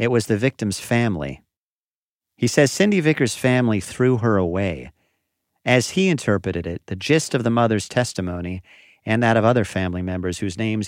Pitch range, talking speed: 95-120 Hz, 170 wpm